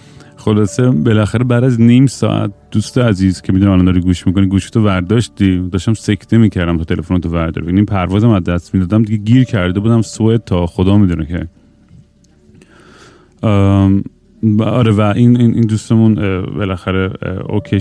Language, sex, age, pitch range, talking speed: Persian, male, 30-49, 90-110 Hz, 150 wpm